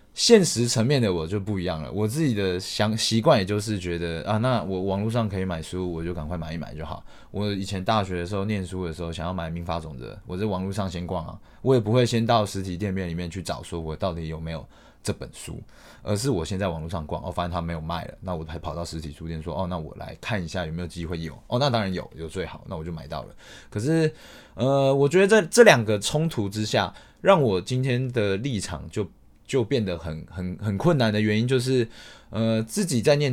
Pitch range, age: 85-115 Hz, 20-39